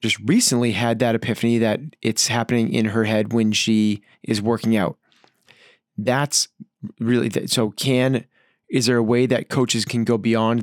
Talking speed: 165 wpm